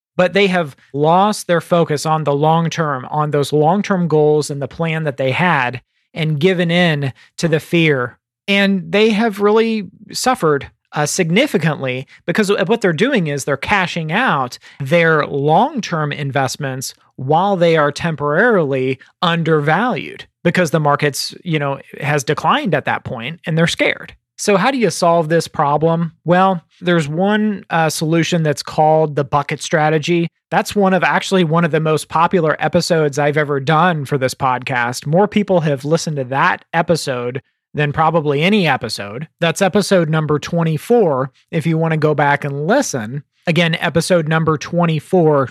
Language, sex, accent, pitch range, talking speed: English, male, American, 145-180 Hz, 160 wpm